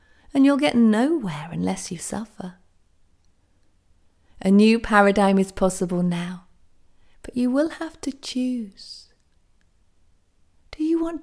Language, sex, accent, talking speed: English, female, British, 120 wpm